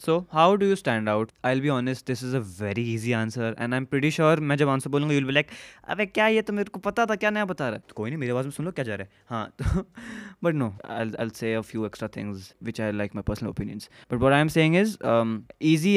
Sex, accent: male, native